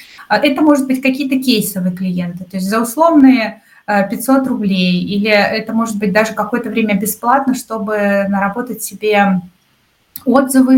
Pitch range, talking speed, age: 190-240 Hz, 135 wpm, 20-39